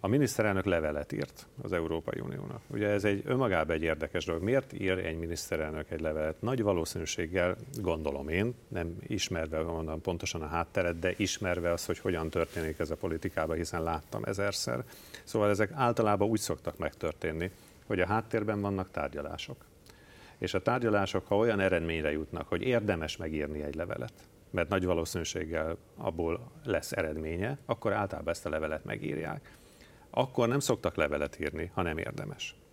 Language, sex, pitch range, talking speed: Hungarian, male, 80-105 Hz, 155 wpm